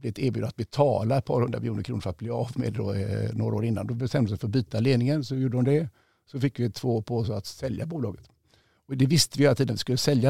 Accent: native